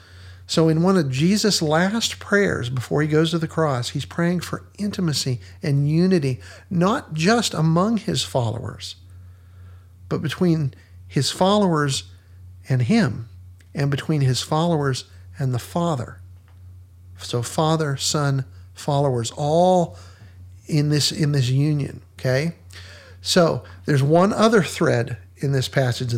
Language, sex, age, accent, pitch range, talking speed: English, male, 50-69, American, 95-155 Hz, 130 wpm